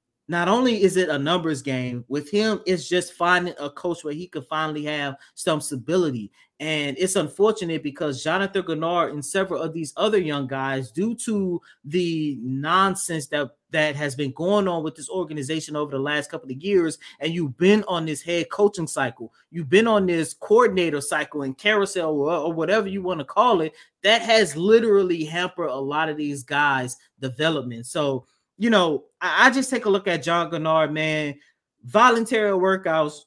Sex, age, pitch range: male, 30-49, 150-195 Hz